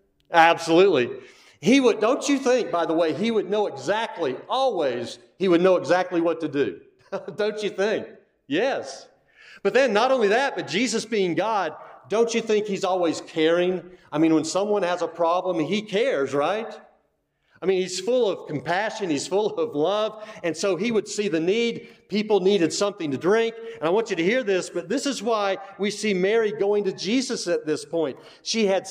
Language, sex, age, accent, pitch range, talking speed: English, male, 40-59, American, 170-230 Hz, 195 wpm